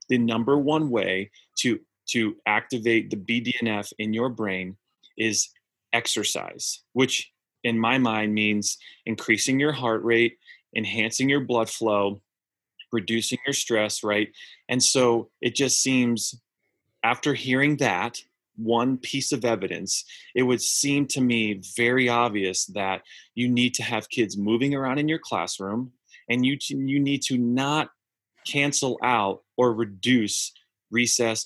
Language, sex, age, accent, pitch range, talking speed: English, male, 30-49, American, 110-130 Hz, 135 wpm